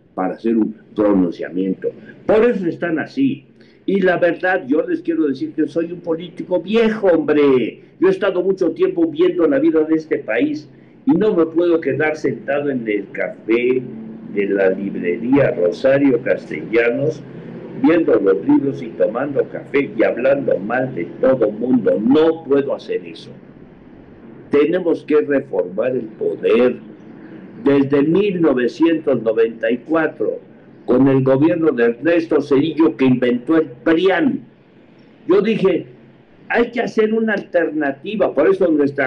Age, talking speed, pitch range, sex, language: 60-79, 135 wpm, 145-200 Hz, male, Spanish